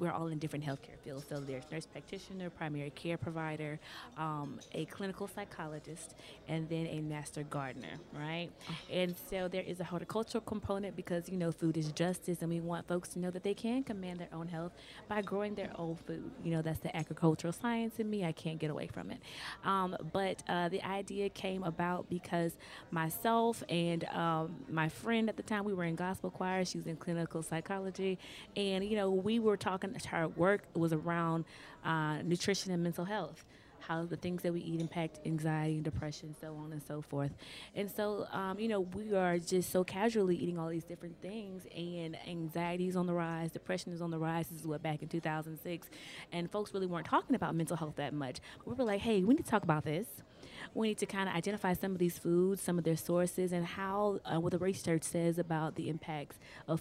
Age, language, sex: 20-39, English, female